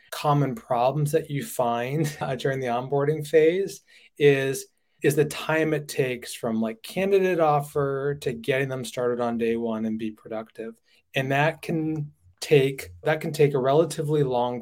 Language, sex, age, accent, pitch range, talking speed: English, male, 20-39, American, 120-150 Hz, 165 wpm